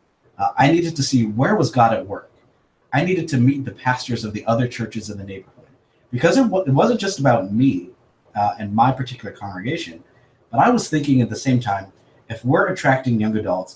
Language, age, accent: English, 30-49, American